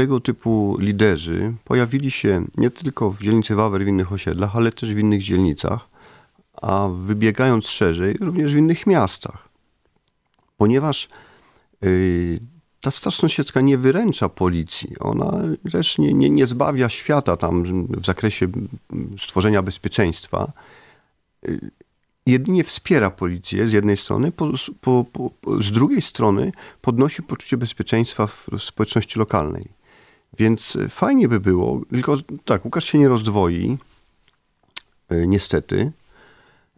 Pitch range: 95-120 Hz